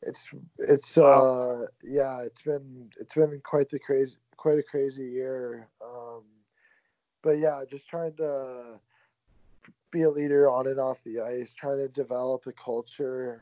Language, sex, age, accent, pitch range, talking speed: English, male, 20-39, American, 120-140 Hz, 150 wpm